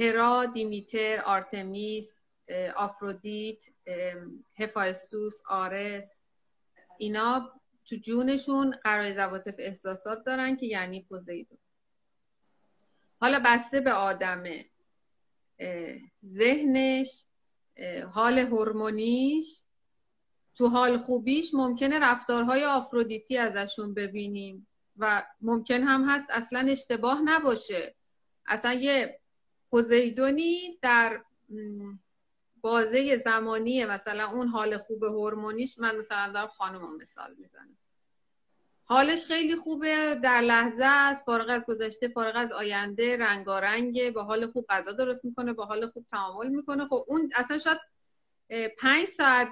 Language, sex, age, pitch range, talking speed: Persian, female, 30-49, 215-265 Hz, 100 wpm